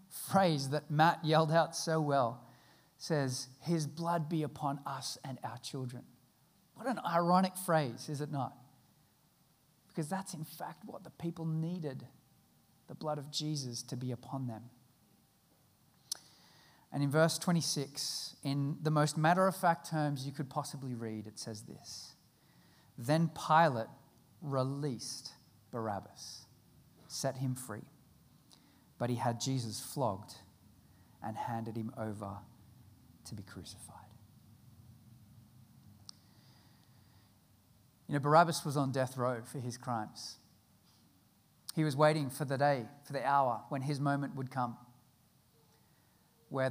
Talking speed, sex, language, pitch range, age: 125 wpm, male, English, 120-155 Hz, 40-59